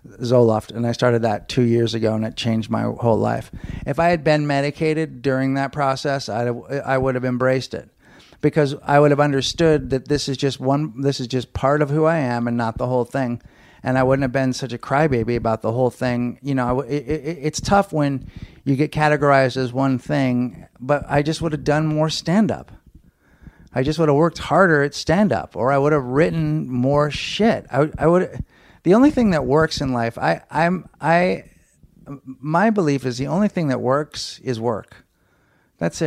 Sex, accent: male, American